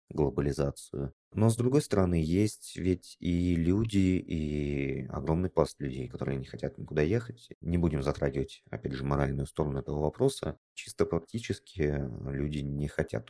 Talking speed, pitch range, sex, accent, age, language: 145 wpm, 70-90 Hz, male, native, 30-49, Russian